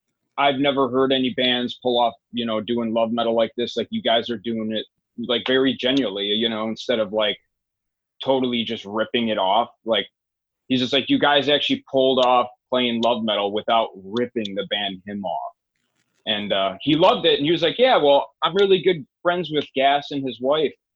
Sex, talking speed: male, 205 wpm